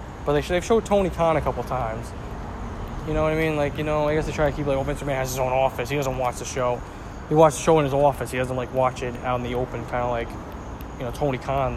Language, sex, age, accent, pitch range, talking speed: English, male, 20-39, American, 125-170 Hz, 300 wpm